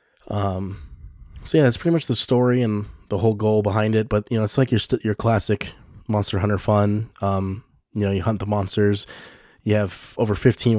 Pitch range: 100-110 Hz